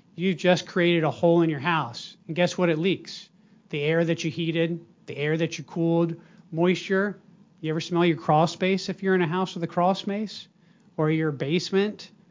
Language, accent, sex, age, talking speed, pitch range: English, American, male, 40-59, 205 wpm, 170-200 Hz